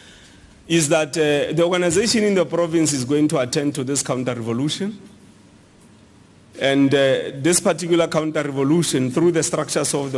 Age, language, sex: 40-59, English, male